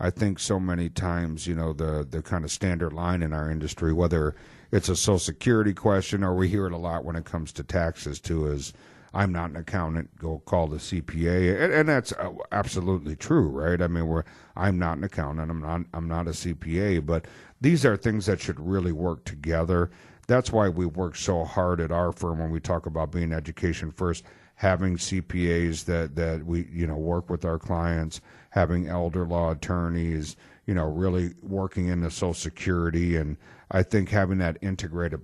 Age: 60-79